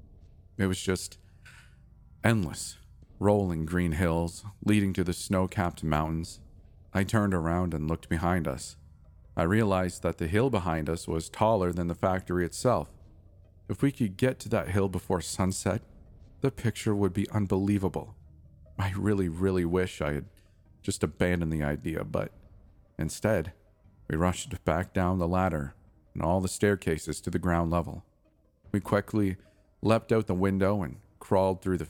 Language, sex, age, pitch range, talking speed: English, male, 40-59, 85-100 Hz, 155 wpm